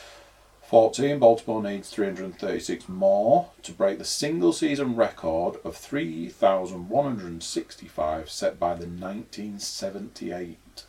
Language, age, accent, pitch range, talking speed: English, 40-59, British, 95-140 Hz, 95 wpm